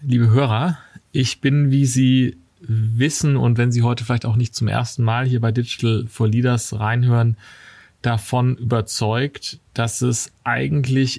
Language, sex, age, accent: German, male, 30-49, German